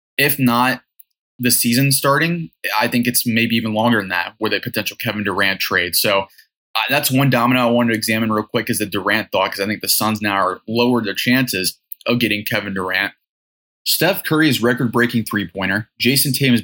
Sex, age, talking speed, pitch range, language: male, 20-39, 195 wpm, 110-125 Hz, English